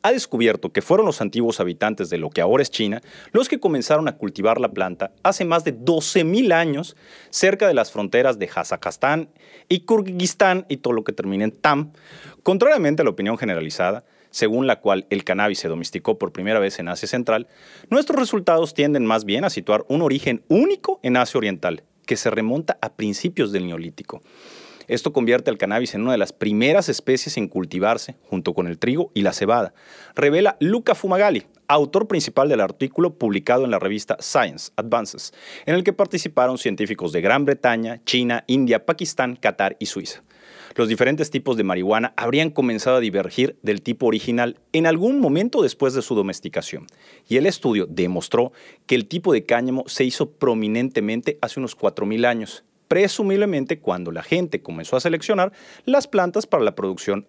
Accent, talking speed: Mexican, 180 wpm